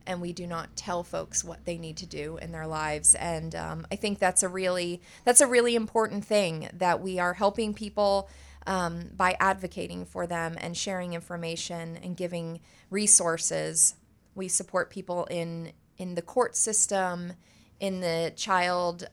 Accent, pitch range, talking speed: American, 175-205 Hz, 165 wpm